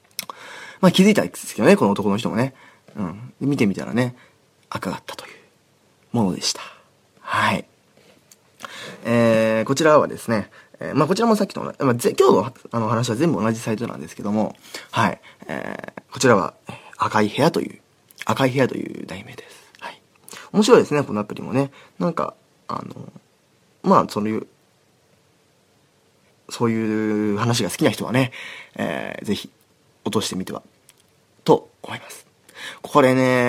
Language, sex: Japanese, male